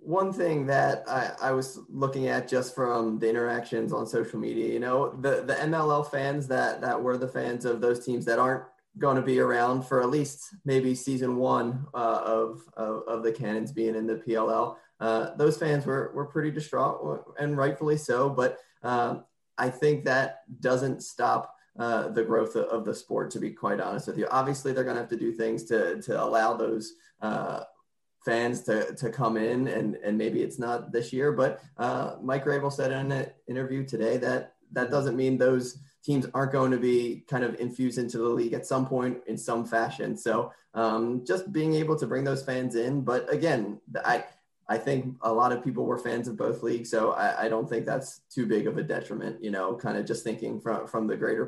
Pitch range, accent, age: 115-135 Hz, American, 20-39